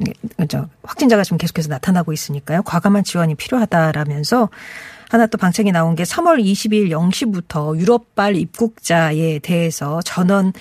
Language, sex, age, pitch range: Korean, female, 40-59, 165-225 Hz